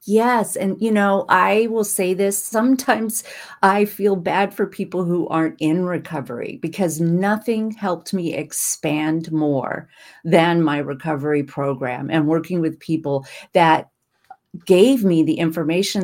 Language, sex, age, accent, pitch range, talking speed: English, female, 40-59, American, 155-200 Hz, 140 wpm